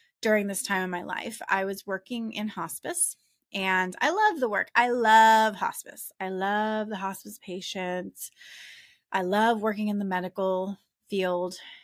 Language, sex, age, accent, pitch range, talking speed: English, female, 20-39, American, 185-225 Hz, 155 wpm